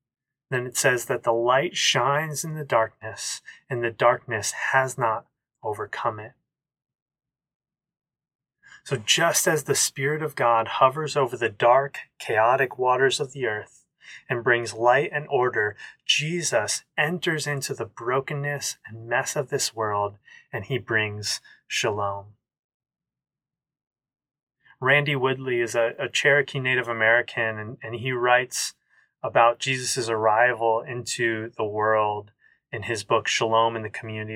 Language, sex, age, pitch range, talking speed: English, male, 20-39, 115-145 Hz, 135 wpm